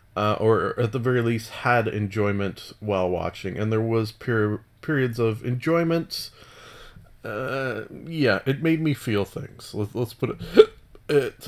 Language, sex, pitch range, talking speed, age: English, male, 110-135 Hz, 150 wpm, 30-49